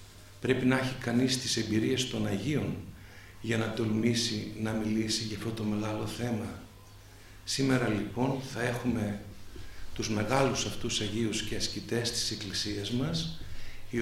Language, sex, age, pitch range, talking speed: Greek, male, 50-69, 100-125 Hz, 135 wpm